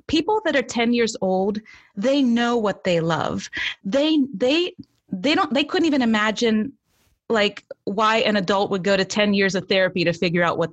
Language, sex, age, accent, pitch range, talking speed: English, female, 30-49, American, 190-250 Hz, 190 wpm